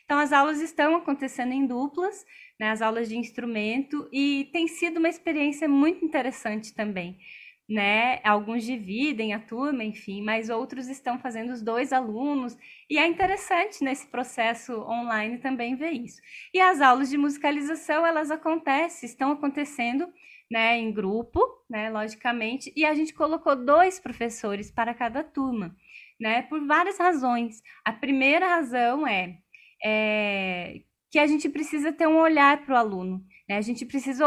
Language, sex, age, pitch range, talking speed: Portuguese, female, 10-29, 240-315 Hz, 155 wpm